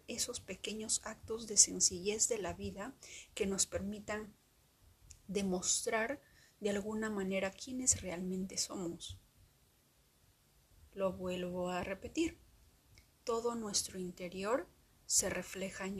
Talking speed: 105 wpm